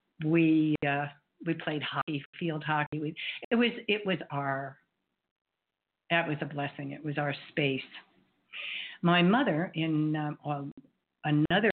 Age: 60-79